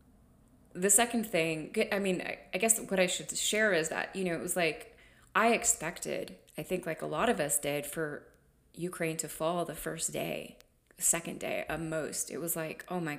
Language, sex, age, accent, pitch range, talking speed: English, female, 20-39, American, 150-180 Hz, 200 wpm